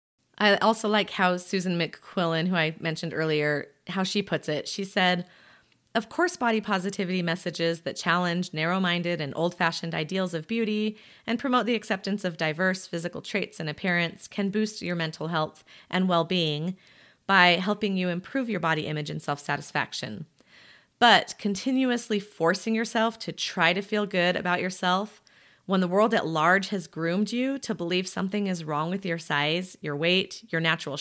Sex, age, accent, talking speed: female, 30-49, American, 165 wpm